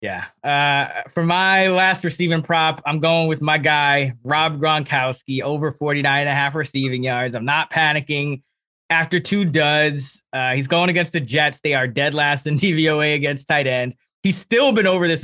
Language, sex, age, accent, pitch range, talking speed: English, male, 20-39, American, 125-155 Hz, 185 wpm